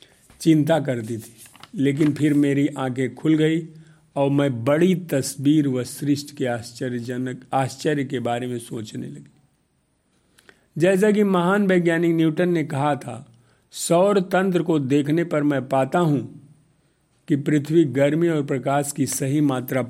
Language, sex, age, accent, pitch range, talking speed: Hindi, male, 50-69, native, 130-165 Hz, 140 wpm